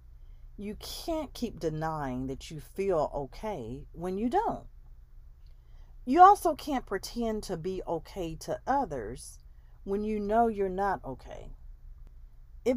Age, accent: 40-59, American